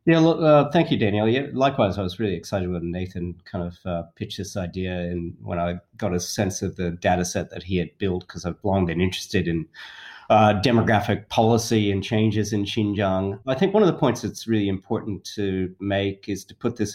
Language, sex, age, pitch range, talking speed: English, male, 30-49, 95-115 Hz, 215 wpm